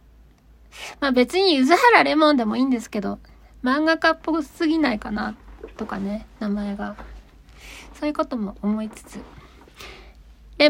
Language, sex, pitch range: Japanese, female, 215-300 Hz